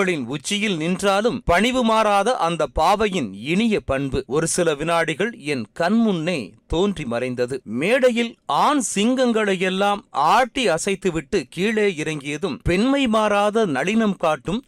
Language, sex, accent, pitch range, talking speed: Tamil, male, native, 160-220 Hz, 105 wpm